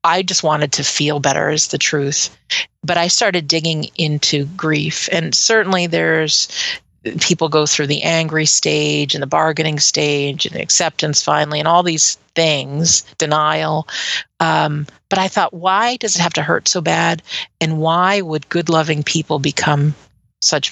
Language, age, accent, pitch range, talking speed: English, 40-59, American, 150-170 Hz, 160 wpm